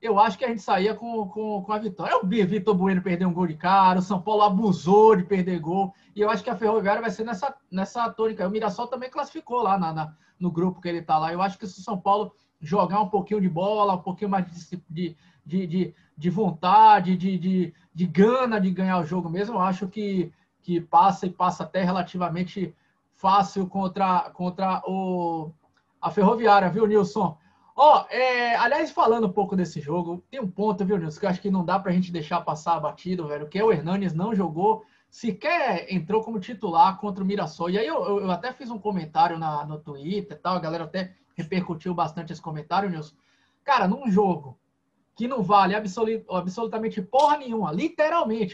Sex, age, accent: male, 20-39, Brazilian